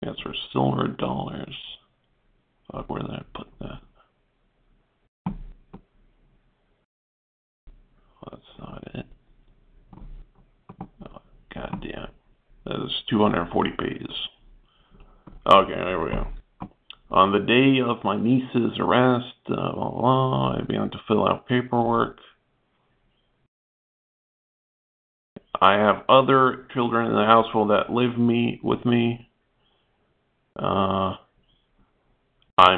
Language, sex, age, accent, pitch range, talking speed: English, male, 50-69, American, 100-120 Hz, 110 wpm